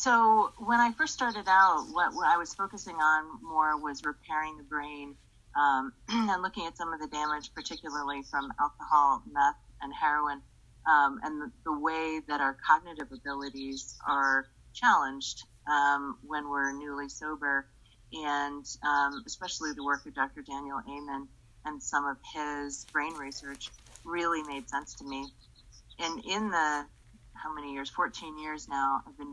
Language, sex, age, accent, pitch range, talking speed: English, female, 30-49, American, 135-155 Hz, 160 wpm